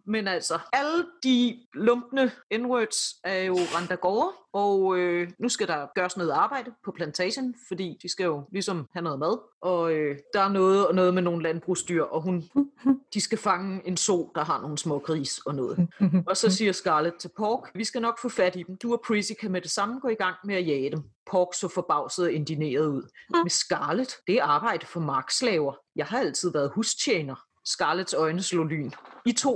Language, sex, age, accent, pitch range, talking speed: Danish, female, 30-49, native, 175-225 Hz, 205 wpm